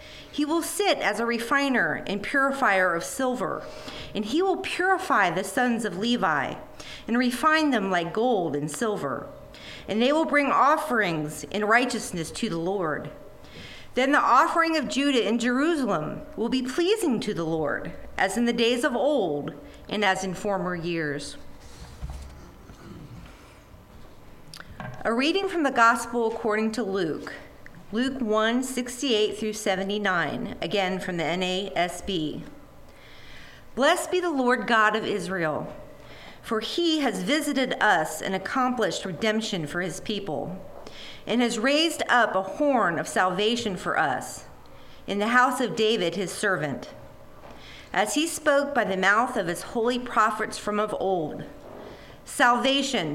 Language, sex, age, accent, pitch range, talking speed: English, female, 40-59, American, 180-255 Hz, 140 wpm